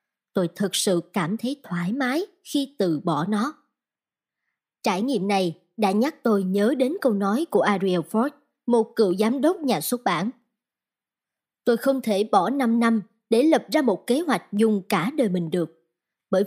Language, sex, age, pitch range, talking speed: Vietnamese, male, 20-39, 195-255 Hz, 180 wpm